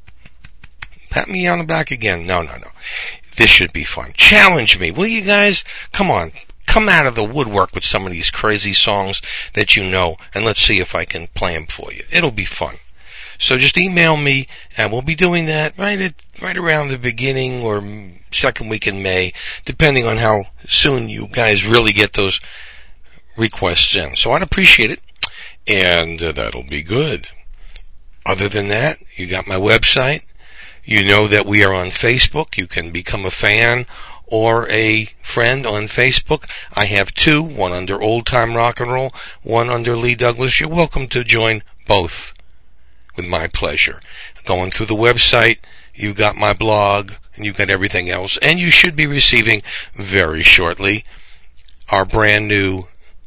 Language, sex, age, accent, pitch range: Japanese, male, 60-79, American, 95-125 Hz